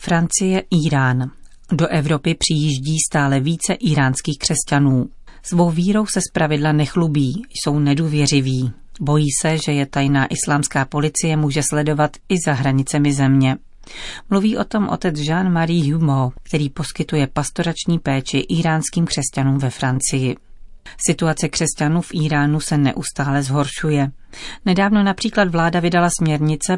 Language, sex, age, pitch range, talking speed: Czech, female, 40-59, 140-170 Hz, 125 wpm